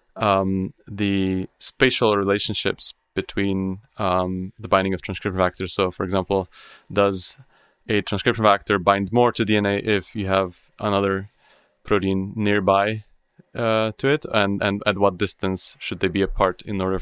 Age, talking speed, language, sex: 20-39, 150 wpm, English, male